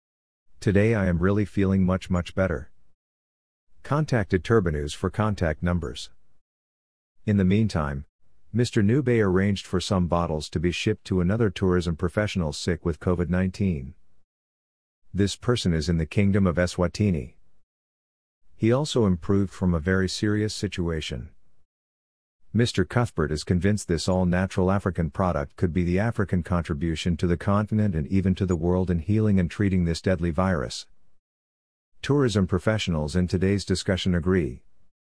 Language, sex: English, male